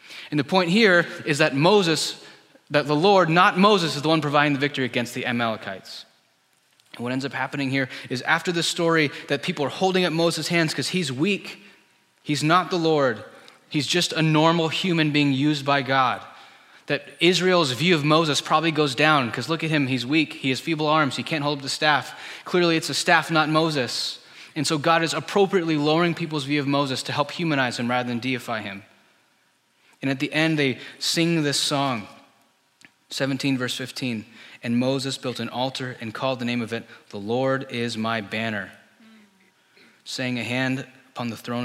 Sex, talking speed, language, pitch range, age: male, 195 wpm, English, 120-155 Hz, 20-39